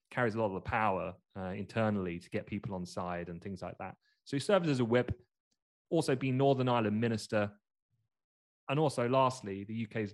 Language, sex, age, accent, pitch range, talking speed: English, male, 30-49, British, 100-130 Hz, 195 wpm